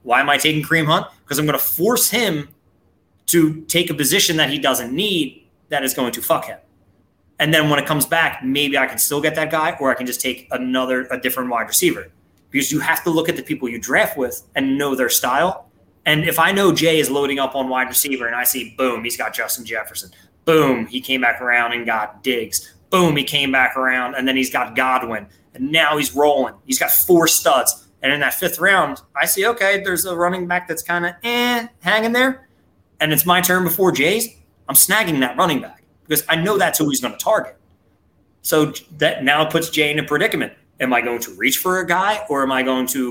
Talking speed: 235 wpm